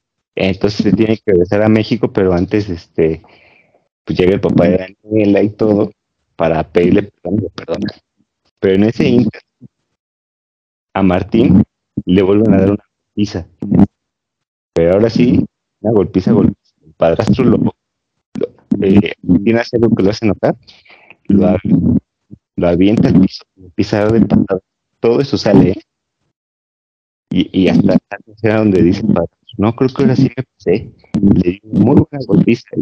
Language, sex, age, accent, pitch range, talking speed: Spanish, male, 30-49, Mexican, 95-110 Hz, 155 wpm